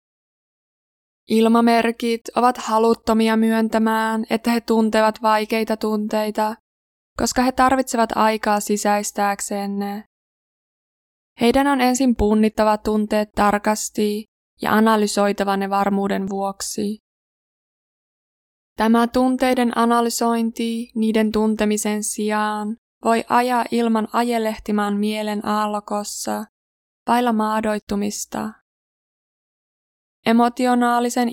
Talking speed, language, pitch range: 80 wpm, Finnish, 210-230 Hz